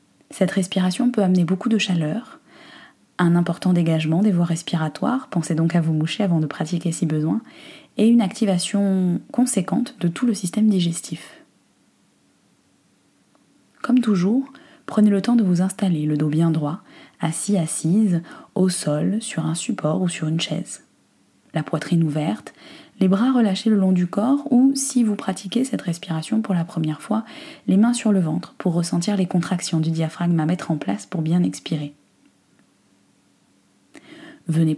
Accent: French